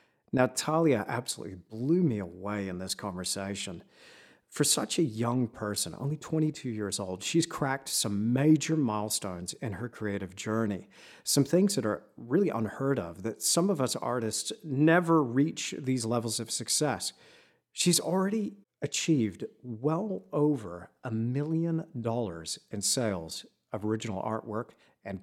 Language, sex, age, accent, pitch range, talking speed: English, male, 40-59, American, 110-175 Hz, 140 wpm